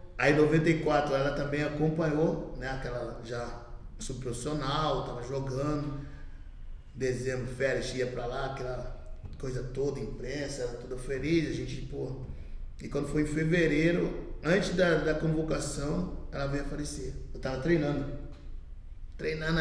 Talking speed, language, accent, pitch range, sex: 130 wpm, Portuguese, Brazilian, 120-155 Hz, male